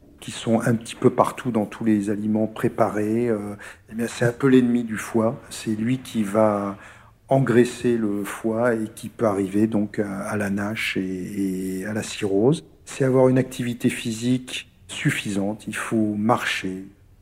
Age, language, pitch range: 50-69, French, 105-120 Hz